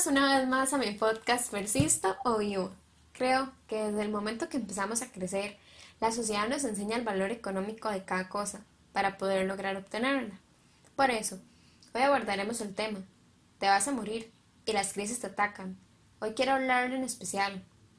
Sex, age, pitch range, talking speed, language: female, 10-29, 195-235 Hz, 175 wpm, Spanish